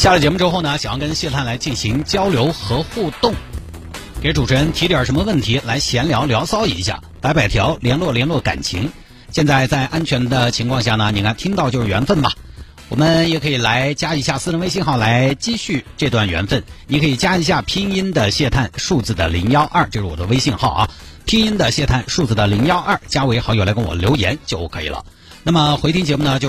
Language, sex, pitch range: Chinese, male, 110-150 Hz